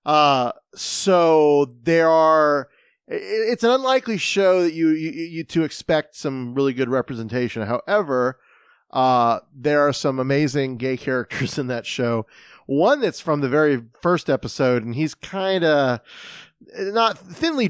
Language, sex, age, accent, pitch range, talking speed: English, male, 30-49, American, 115-145 Hz, 140 wpm